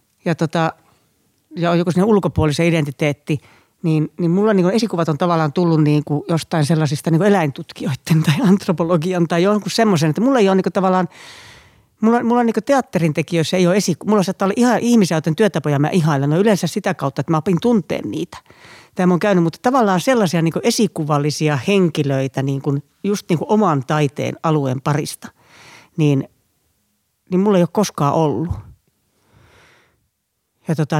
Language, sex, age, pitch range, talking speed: Finnish, female, 40-59, 150-200 Hz, 160 wpm